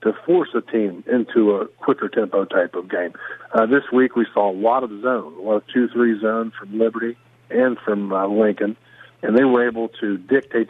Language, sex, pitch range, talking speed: English, male, 110-125 Hz, 200 wpm